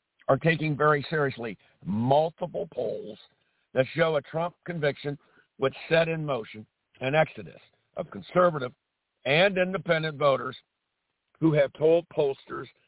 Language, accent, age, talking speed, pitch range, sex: English, American, 60-79, 120 wpm, 130-165 Hz, male